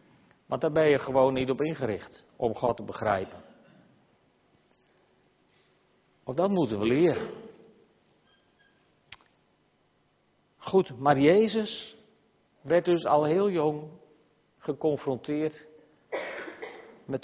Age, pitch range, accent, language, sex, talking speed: 50-69, 145-200 Hz, Dutch, Dutch, male, 95 wpm